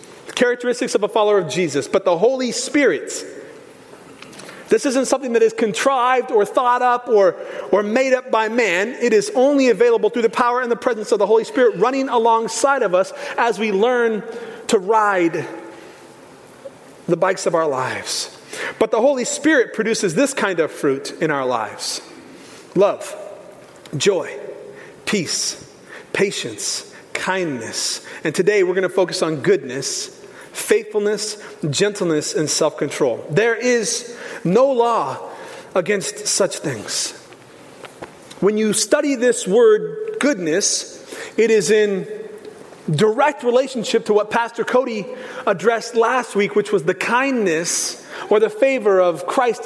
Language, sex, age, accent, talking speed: English, male, 40-59, American, 140 wpm